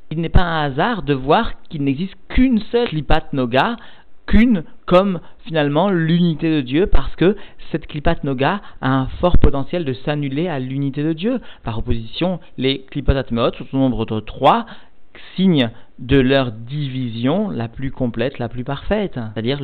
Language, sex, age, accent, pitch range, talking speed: French, male, 40-59, French, 125-160 Hz, 170 wpm